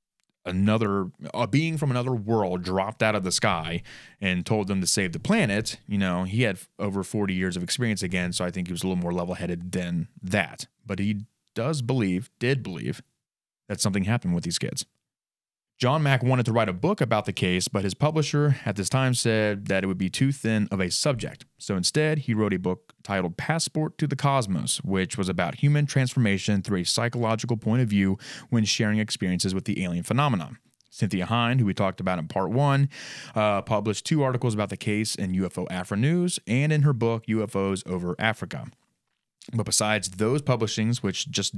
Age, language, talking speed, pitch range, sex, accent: 30-49, English, 200 wpm, 95-125 Hz, male, American